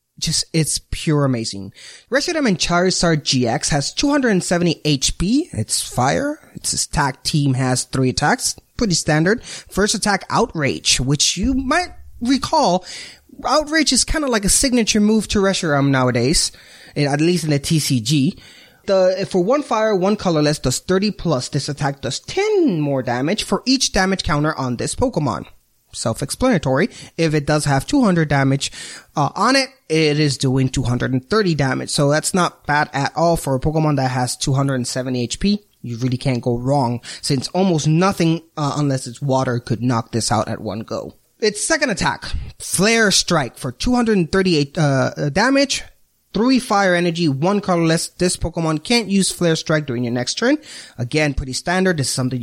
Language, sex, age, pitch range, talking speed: English, male, 20-39, 130-190 Hz, 165 wpm